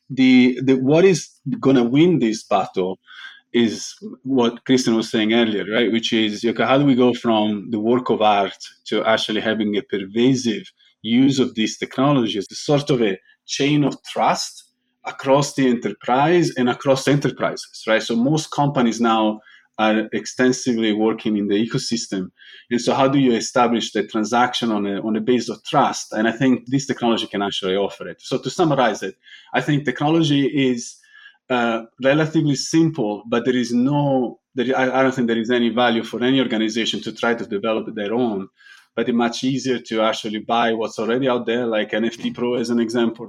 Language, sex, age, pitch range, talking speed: English, male, 20-39, 110-130 Hz, 180 wpm